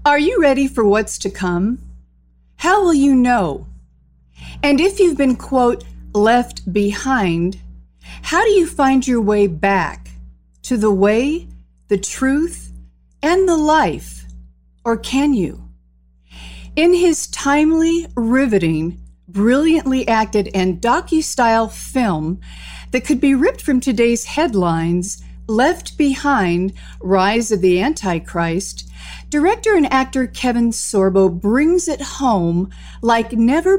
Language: English